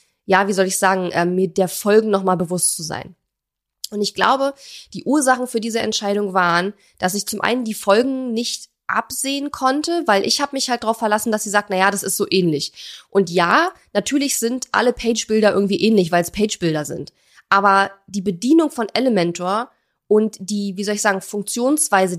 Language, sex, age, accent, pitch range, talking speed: German, female, 20-39, German, 190-240 Hz, 190 wpm